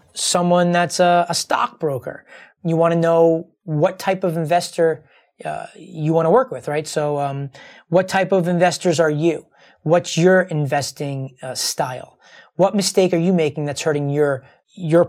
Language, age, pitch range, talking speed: English, 30-49, 150-180 Hz, 170 wpm